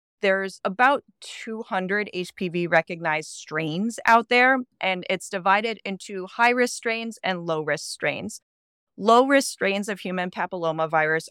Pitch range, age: 160-200 Hz, 20-39